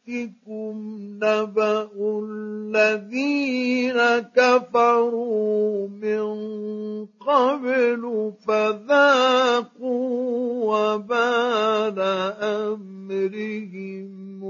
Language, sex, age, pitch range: Arabic, male, 50-69, 215-275 Hz